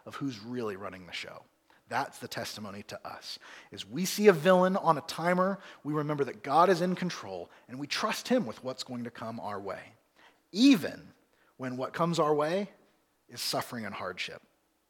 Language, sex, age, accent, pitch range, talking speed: English, male, 40-59, American, 145-195 Hz, 190 wpm